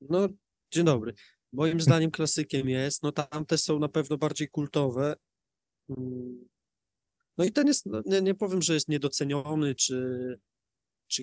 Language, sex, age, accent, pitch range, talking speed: Polish, male, 20-39, native, 130-150 Hz, 140 wpm